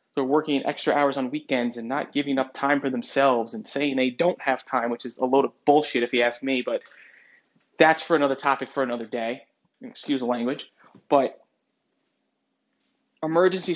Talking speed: 185 wpm